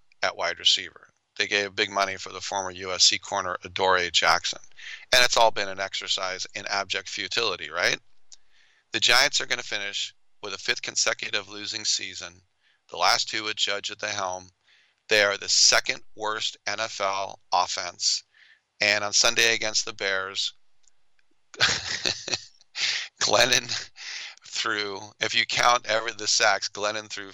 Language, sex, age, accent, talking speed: English, male, 40-59, American, 145 wpm